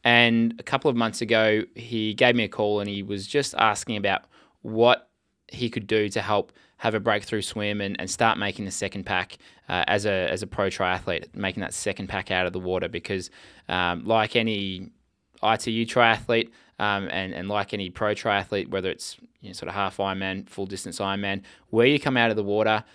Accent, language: Australian, English